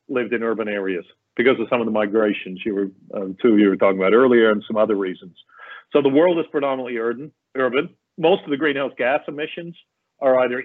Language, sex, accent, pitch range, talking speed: English, male, American, 115-150 Hz, 195 wpm